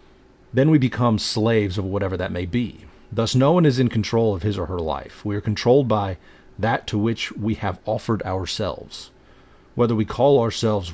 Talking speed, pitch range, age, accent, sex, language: 190 wpm, 95-120 Hz, 40-59, American, male, English